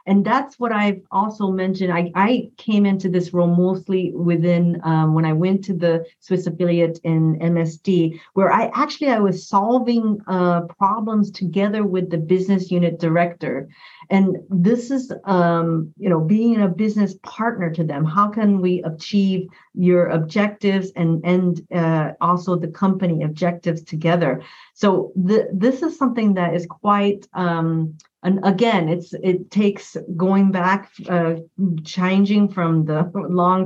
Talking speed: 150 wpm